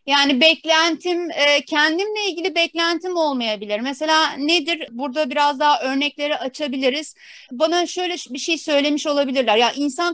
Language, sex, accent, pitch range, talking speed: Turkish, female, native, 250-315 Hz, 125 wpm